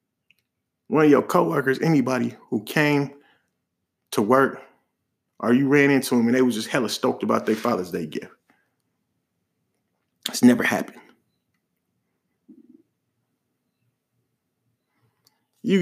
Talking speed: 110 wpm